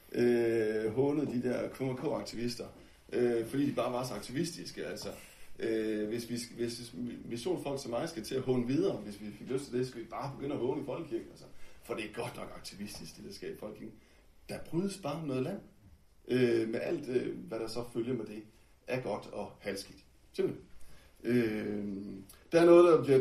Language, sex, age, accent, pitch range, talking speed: Danish, male, 60-79, native, 110-140 Hz, 200 wpm